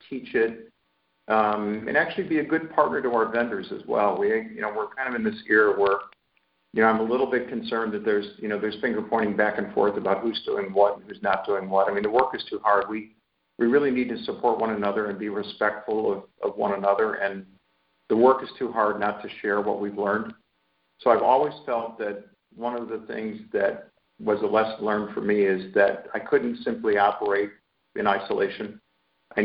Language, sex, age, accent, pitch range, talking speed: English, male, 50-69, American, 100-115 Hz, 220 wpm